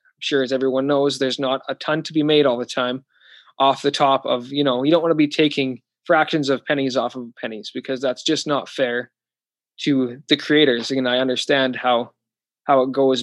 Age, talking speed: 20-39, 215 wpm